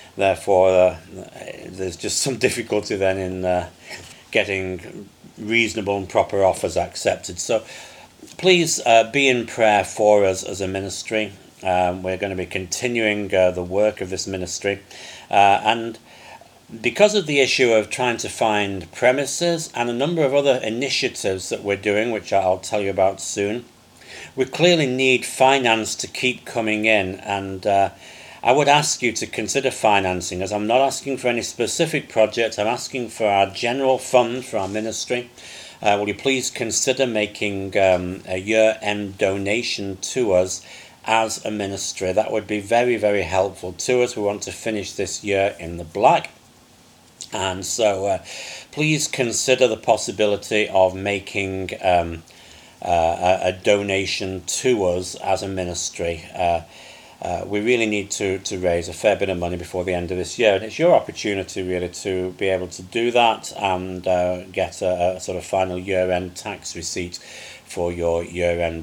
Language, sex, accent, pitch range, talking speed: English, male, British, 90-115 Hz, 165 wpm